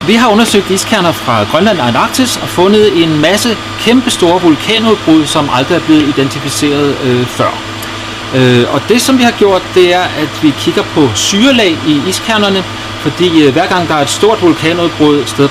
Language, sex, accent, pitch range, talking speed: Danish, male, native, 110-175 Hz, 180 wpm